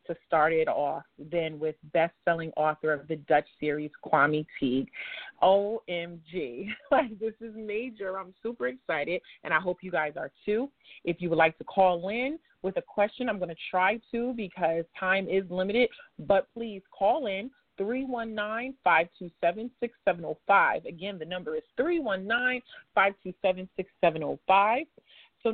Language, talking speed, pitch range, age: English, 140 wpm, 180-225 Hz, 30-49